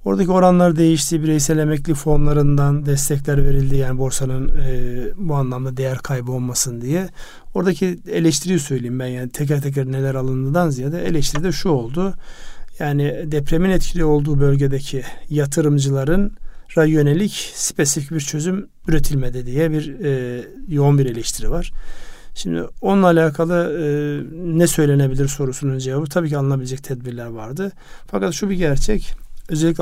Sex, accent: male, native